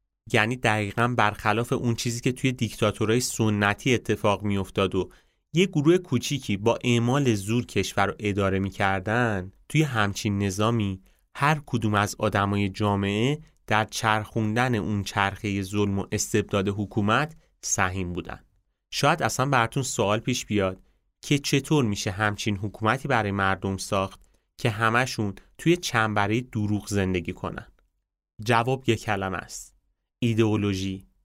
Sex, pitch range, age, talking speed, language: male, 100-120 Hz, 30-49, 130 wpm, Persian